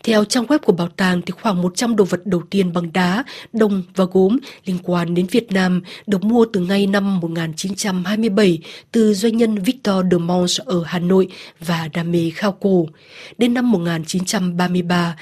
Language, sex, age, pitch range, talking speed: Vietnamese, female, 20-39, 180-220 Hz, 180 wpm